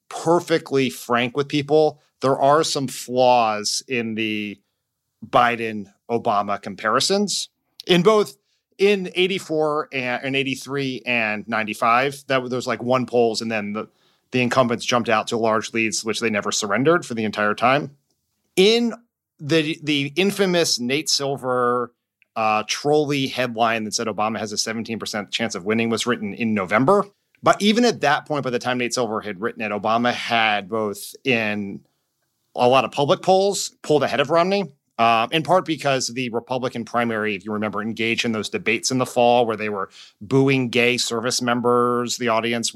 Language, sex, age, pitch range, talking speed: English, male, 30-49, 110-140 Hz, 170 wpm